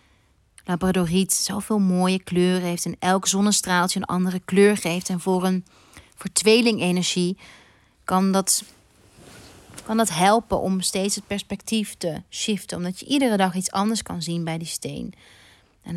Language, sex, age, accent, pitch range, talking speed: Dutch, female, 30-49, Dutch, 175-200 Hz, 150 wpm